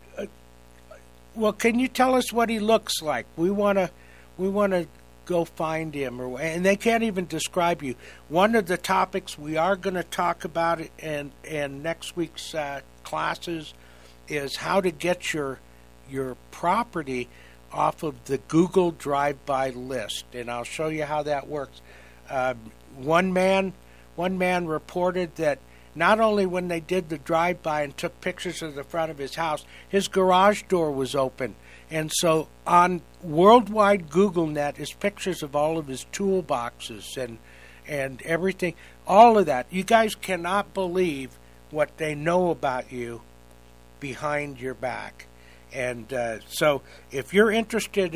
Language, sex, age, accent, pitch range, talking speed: English, male, 60-79, American, 125-185 Hz, 155 wpm